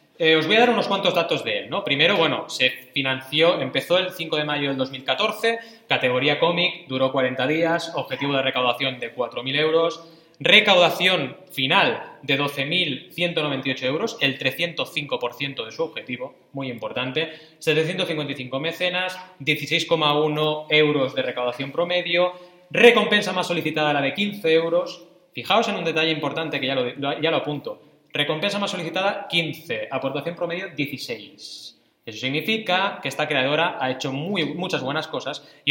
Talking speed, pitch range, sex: 145 wpm, 135-180 Hz, male